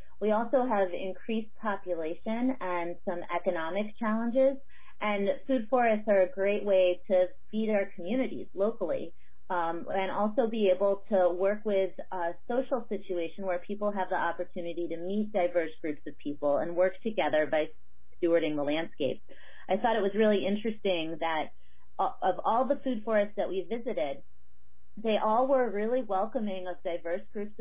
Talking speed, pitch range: 160 wpm, 175-215 Hz